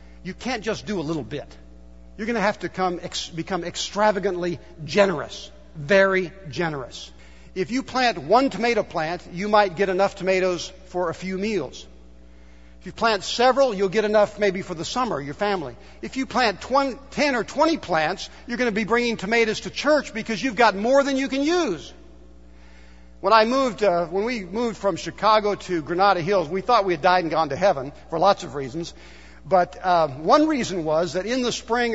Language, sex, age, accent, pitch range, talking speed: English, male, 60-79, American, 170-245 Hz, 190 wpm